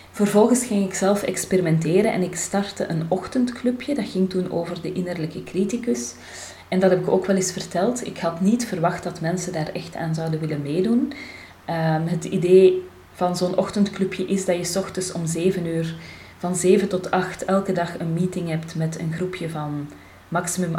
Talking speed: 185 wpm